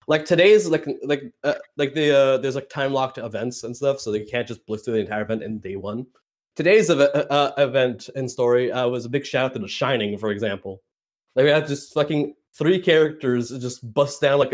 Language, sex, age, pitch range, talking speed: English, male, 20-39, 125-155 Hz, 225 wpm